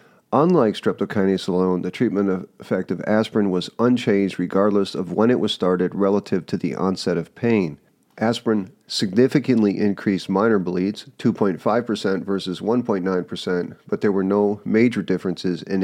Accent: American